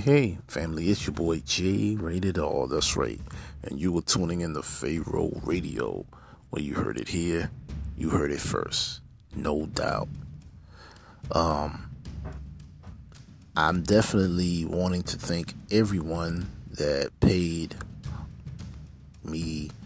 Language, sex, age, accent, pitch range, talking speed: English, male, 40-59, American, 75-90 Hz, 120 wpm